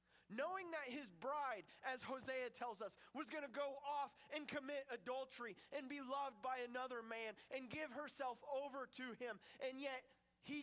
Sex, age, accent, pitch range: male, 30-49, American, 210-270 Hz